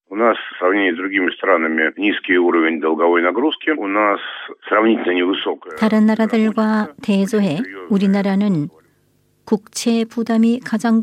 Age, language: 60-79, Korean